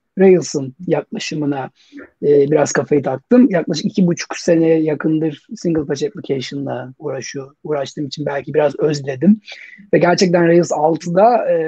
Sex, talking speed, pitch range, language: male, 130 wpm, 150-200 Hz, Turkish